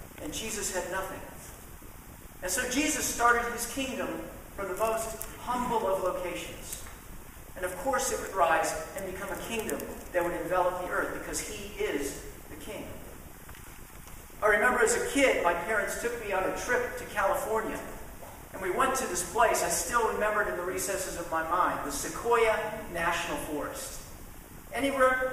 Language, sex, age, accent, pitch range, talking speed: English, male, 50-69, American, 195-250 Hz, 170 wpm